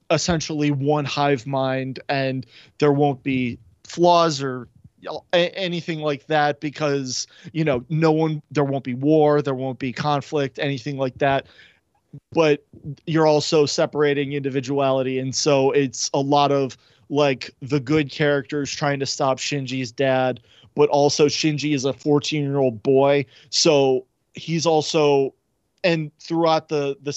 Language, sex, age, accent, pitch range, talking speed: English, male, 30-49, American, 135-150 Hz, 145 wpm